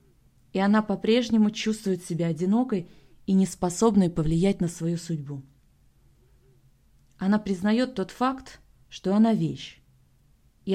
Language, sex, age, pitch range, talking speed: Russian, female, 20-39, 165-210 Hz, 110 wpm